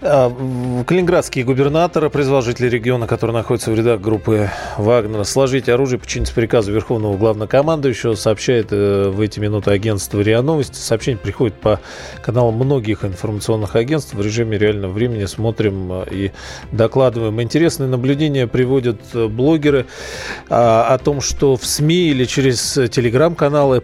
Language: Russian